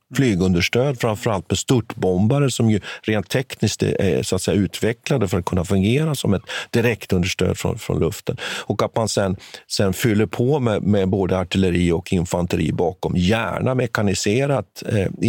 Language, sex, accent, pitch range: Swedish, male, native, 100-145 Hz